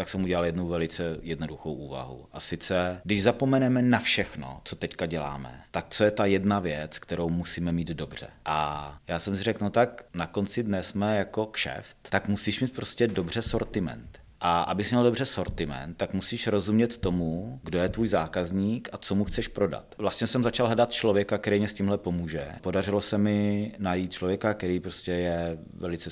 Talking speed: 190 wpm